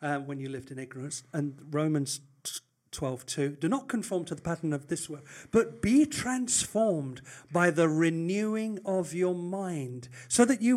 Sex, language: male, English